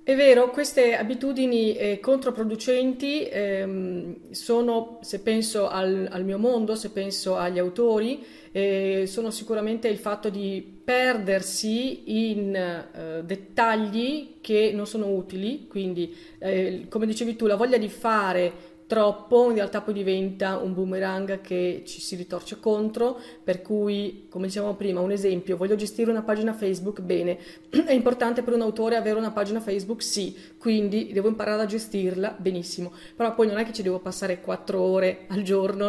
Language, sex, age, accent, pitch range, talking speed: Italian, female, 30-49, native, 185-225 Hz, 155 wpm